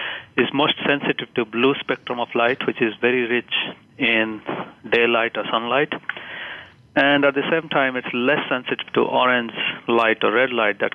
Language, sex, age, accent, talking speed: English, male, 40-59, Indian, 170 wpm